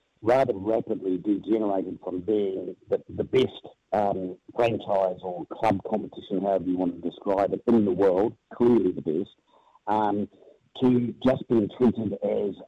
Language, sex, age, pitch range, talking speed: English, male, 50-69, 95-125 Hz, 145 wpm